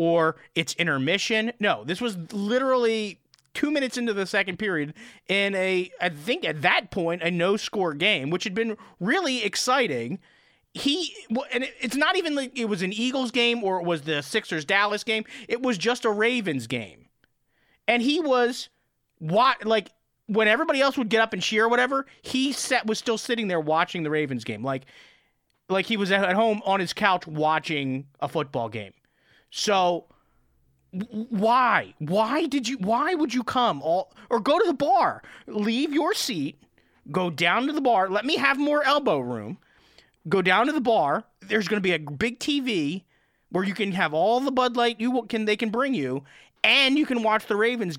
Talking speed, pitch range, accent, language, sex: 185 wpm, 170-245 Hz, American, English, male